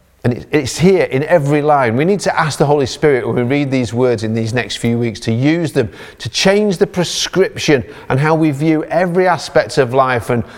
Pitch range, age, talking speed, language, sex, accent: 125-175 Hz, 40-59, 220 wpm, English, male, British